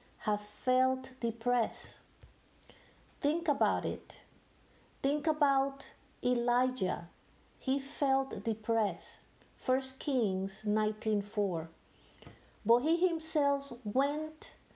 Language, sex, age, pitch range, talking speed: English, female, 50-69, 215-270 Hz, 80 wpm